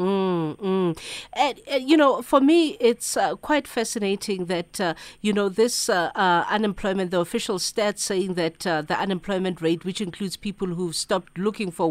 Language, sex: English, female